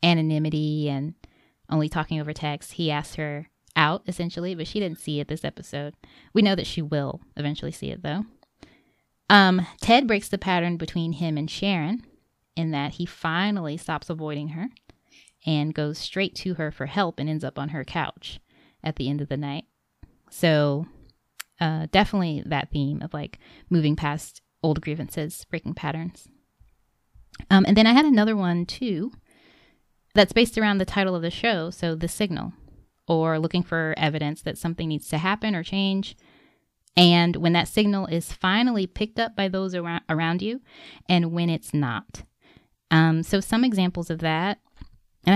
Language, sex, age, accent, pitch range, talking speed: English, female, 20-39, American, 155-195 Hz, 170 wpm